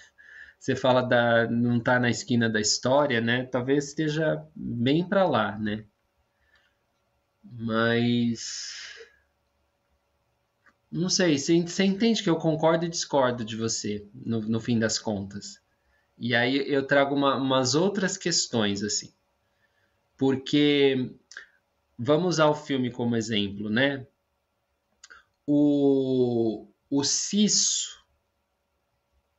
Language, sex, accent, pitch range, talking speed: Portuguese, male, Brazilian, 110-150 Hz, 110 wpm